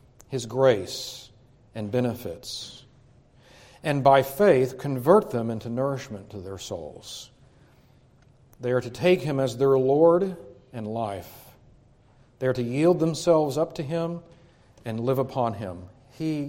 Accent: American